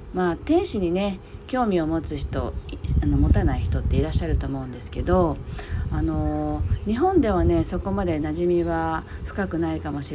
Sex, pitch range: female, 145-205 Hz